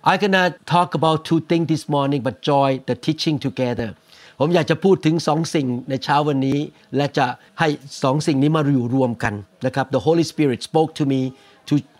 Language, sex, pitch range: Thai, male, 145-195 Hz